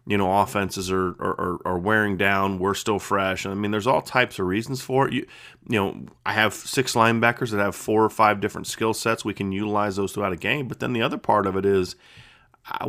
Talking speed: 235 wpm